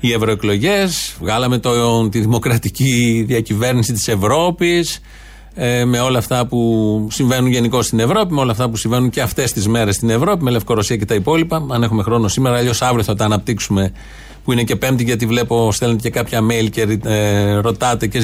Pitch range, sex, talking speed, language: 115-165 Hz, male, 180 wpm, Greek